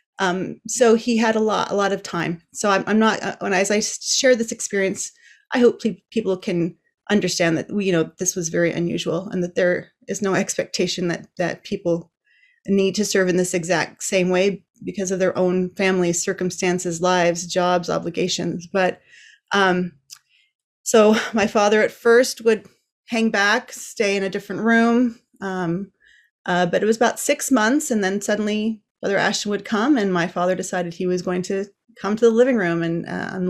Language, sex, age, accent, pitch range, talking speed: English, female, 30-49, American, 185-225 Hz, 190 wpm